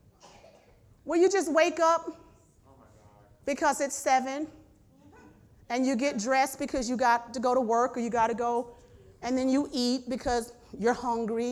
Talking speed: 155 wpm